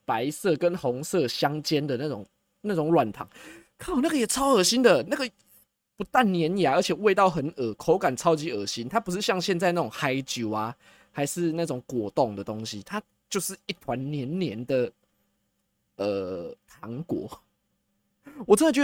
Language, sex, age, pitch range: Chinese, male, 20-39, 125-185 Hz